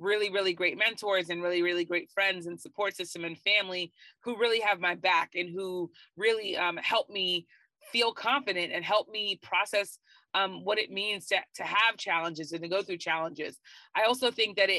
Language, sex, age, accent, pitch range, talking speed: English, female, 30-49, American, 180-220 Hz, 195 wpm